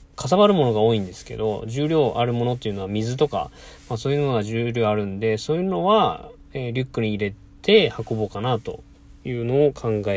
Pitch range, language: 105-140 Hz, Japanese